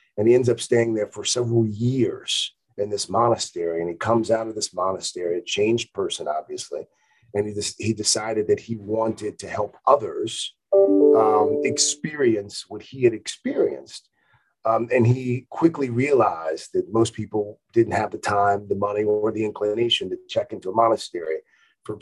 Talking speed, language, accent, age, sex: 170 wpm, English, American, 40-59, male